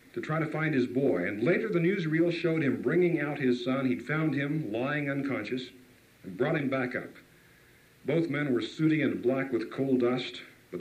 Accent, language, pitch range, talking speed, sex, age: American, English, 110-150 Hz, 200 wpm, male, 60-79